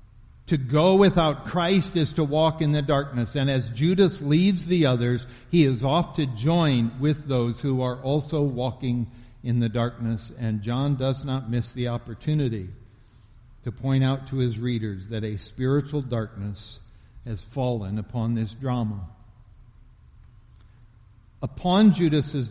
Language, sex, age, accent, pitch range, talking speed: English, male, 60-79, American, 115-150 Hz, 145 wpm